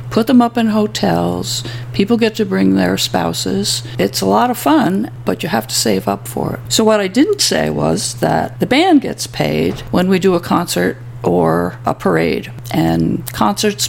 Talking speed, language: 195 wpm, English